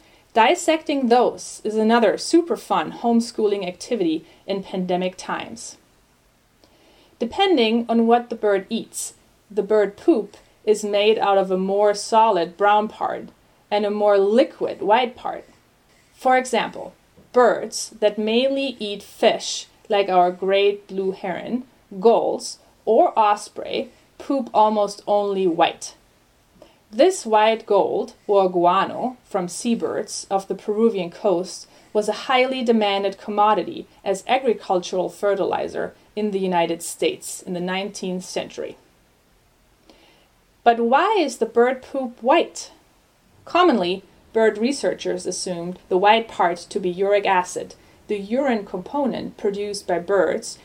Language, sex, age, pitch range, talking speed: English, female, 30-49, 195-235 Hz, 125 wpm